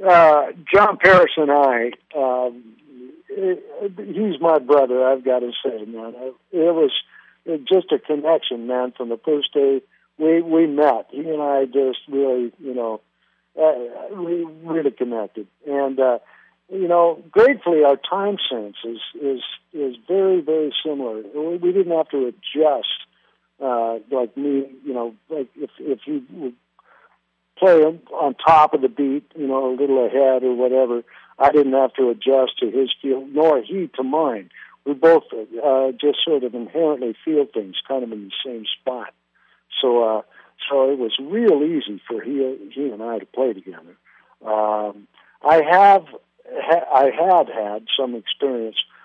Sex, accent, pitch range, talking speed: male, American, 125-160 Hz, 160 wpm